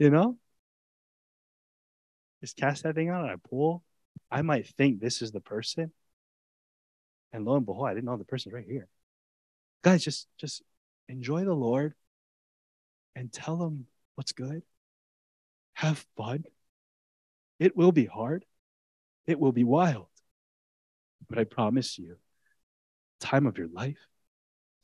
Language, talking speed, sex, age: English, 140 wpm, male, 20-39